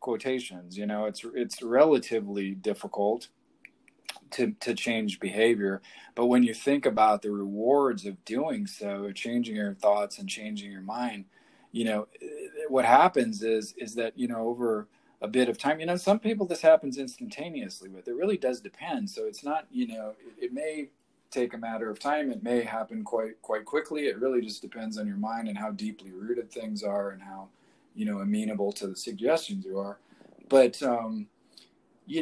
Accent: American